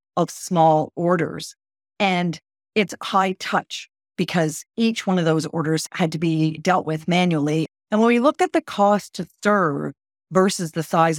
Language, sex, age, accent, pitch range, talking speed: English, female, 40-59, American, 155-205 Hz, 165 wpm